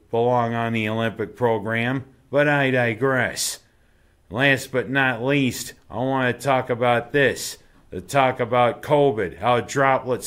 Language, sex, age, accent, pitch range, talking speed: English, male, 50-69, American, 115-140 Hz, 140 wpm